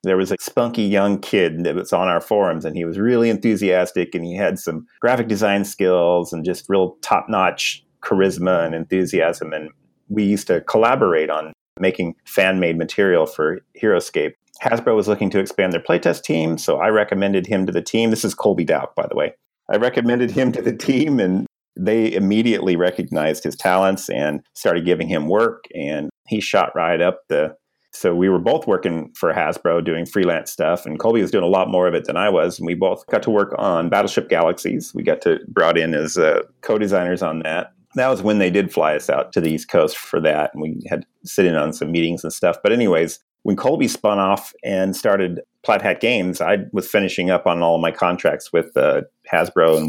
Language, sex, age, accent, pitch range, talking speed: English, male, 40-59, American, 85-110 Hz, 215 wpm